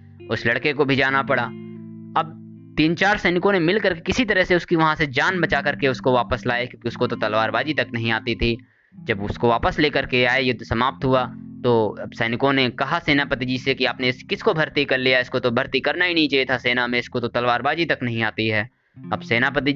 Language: Hindi